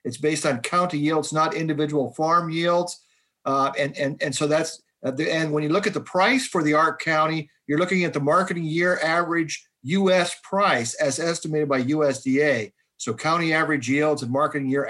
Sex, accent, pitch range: male, American, 140-185 Hz